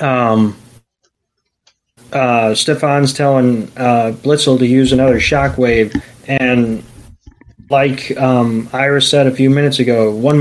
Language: English